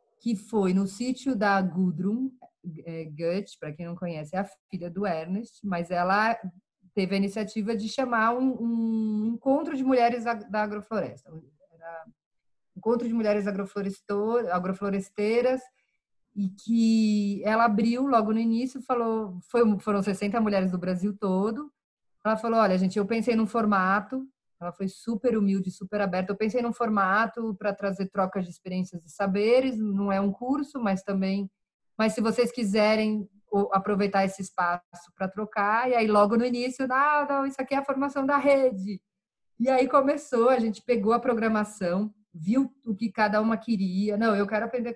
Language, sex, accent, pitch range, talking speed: Portuguese, female, Brazilian, 195-235 Hz, 165 wpm